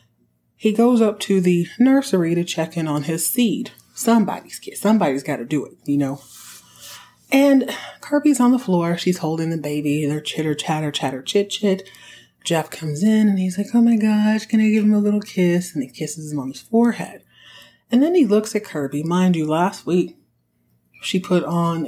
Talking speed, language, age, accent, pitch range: 190 wpm, English, 30-49, American, 150-205 Hz